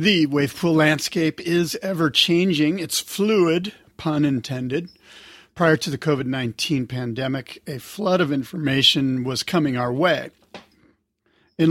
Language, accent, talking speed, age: English, American, 125 wpm, 40-59